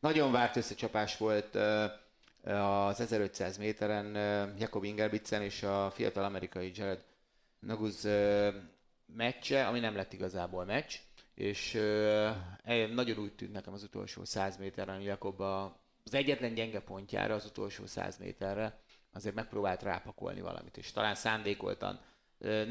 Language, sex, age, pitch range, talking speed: Hungarian, male, 30-49, 95-110 Hz, 140 wpm